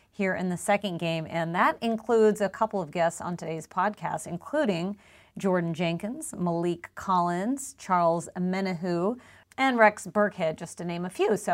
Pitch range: 175-220 Hz